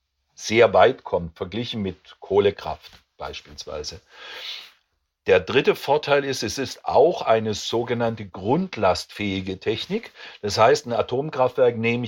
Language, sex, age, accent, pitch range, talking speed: German, male, 50-69, German, 105-145 Hz, 115 wpm